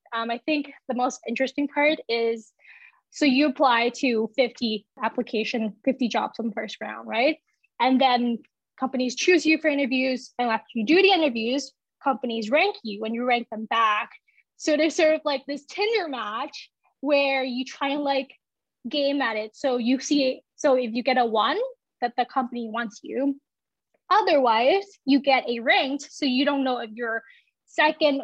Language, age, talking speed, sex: English, 10-29, 180 wpm, female